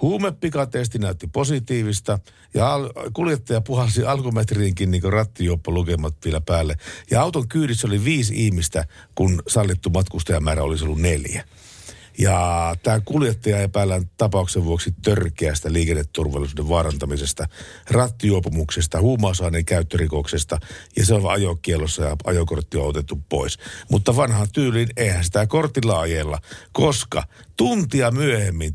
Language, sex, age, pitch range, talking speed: Finnish, male, 60-79, 90-120 Hz, 115 wpm